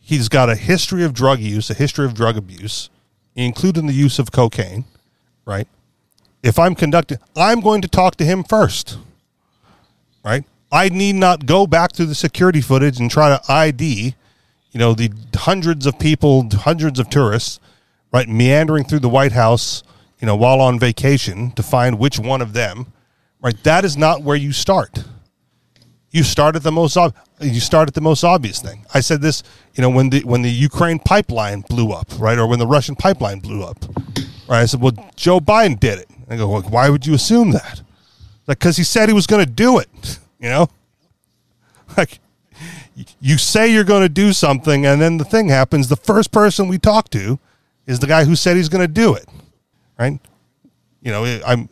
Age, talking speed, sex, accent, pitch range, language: 40-59, 195 wpm, male, American, 120-160 Hz, English